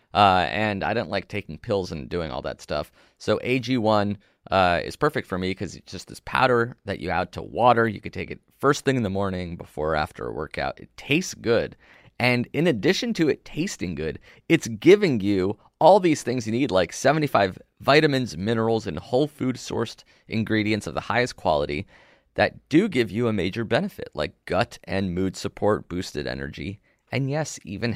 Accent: American